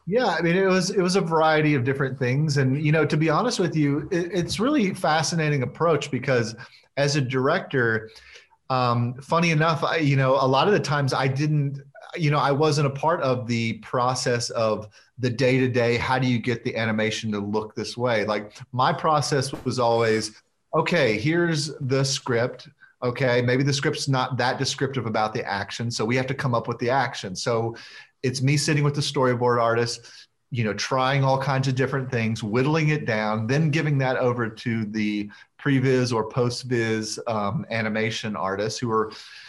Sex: male